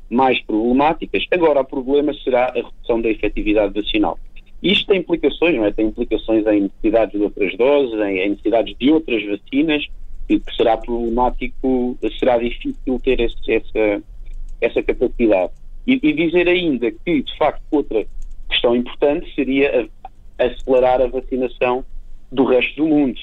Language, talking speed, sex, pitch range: Portuguese, 145 wpm, male, 115-150 Hz